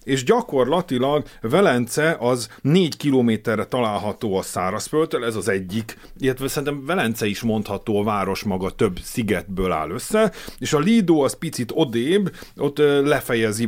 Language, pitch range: Hungarian, 115-150 Hz